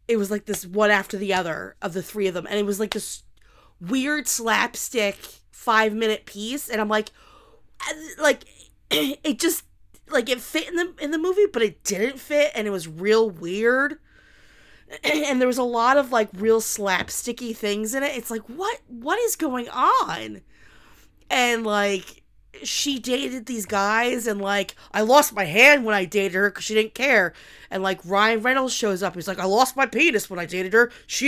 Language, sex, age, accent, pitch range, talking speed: English, female, 20-39, American, 210-290 Hz, 195 wpm